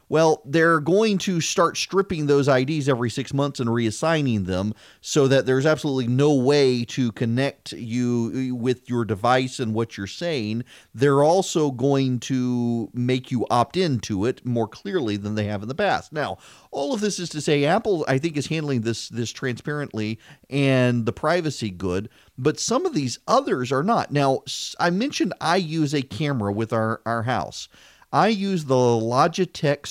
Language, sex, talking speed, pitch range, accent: English, male, 175 wpm, 110-145 Hz, American